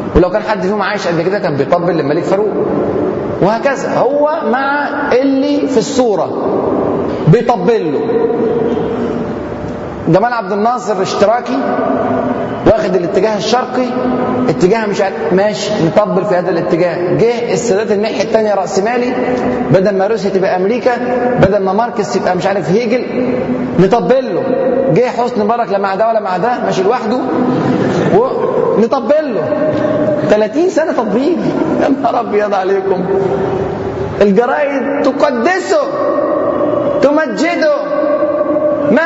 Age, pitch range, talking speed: 30-49, 205-280 Hz, 115 wpm